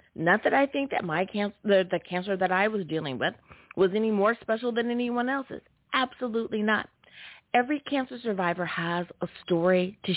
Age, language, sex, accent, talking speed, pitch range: 30-49, English, female, American, 185 wpm, 170-225 Hz